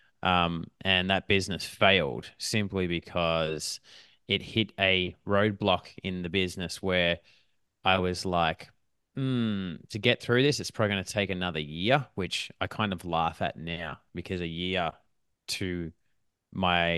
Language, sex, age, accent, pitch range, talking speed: English, male, 20-39, Australian, 85-105 Hz, 150 wpm